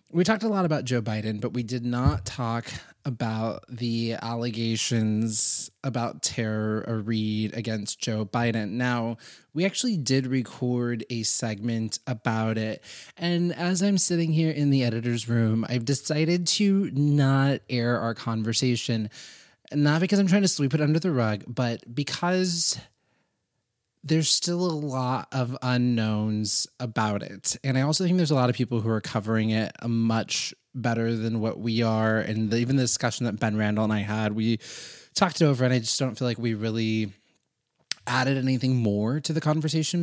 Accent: American